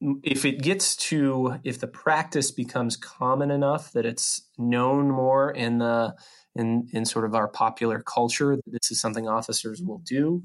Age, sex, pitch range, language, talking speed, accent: 20-39, male, 115-140 Hz, English, 170 wpm, American